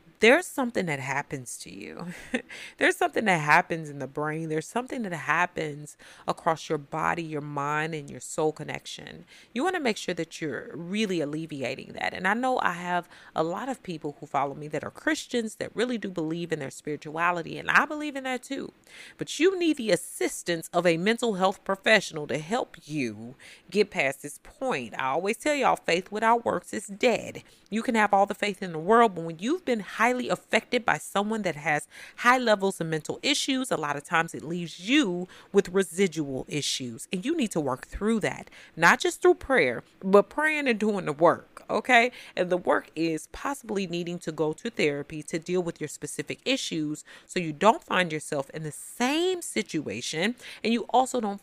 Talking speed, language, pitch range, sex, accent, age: 200 wpm, English, 155-230 Hz, female, American, 30-49